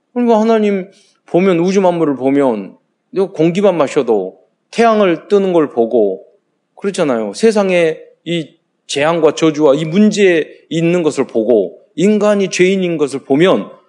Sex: male